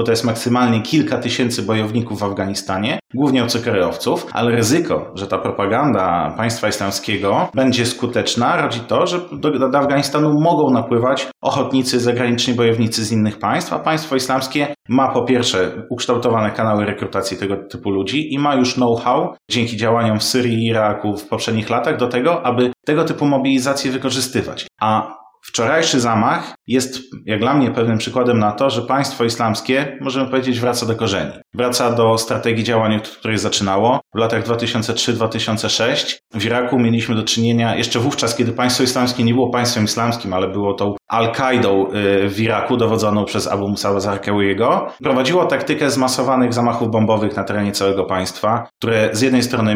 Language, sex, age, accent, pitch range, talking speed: Polish, male, 30-49, native, 105-125 Hz, 160 wpm